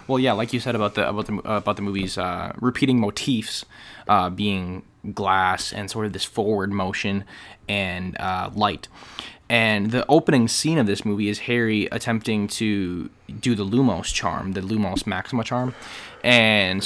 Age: 20-39